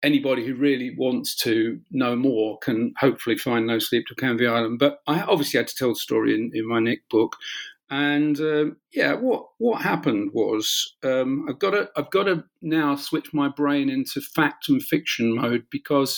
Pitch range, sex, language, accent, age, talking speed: 125-150 Hz, male, English, British, 50-69, 195 wpm